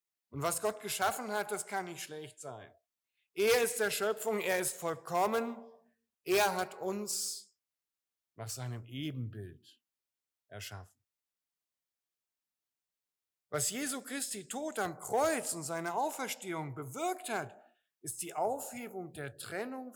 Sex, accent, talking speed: male, German, 120 wpm